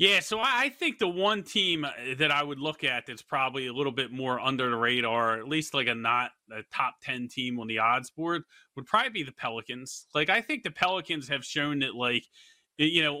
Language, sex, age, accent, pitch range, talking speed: English, male, 30-49, American, 125-170 Hz, 225 wpm